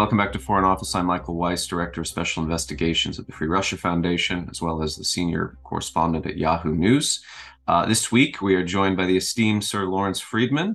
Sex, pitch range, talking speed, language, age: male, 90-105 Hz, 210 wpm, English, 30-49